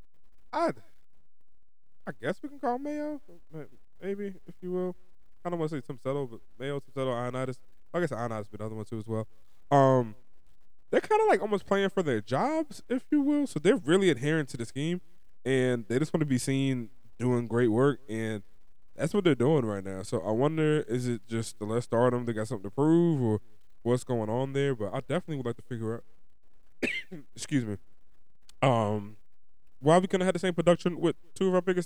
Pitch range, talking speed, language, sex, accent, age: 110-155 Hz, 215 wpm, English, male, American, 20-39